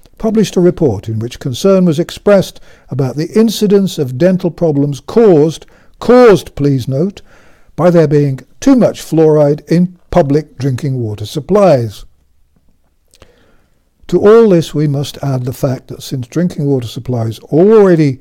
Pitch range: 130-180 Hz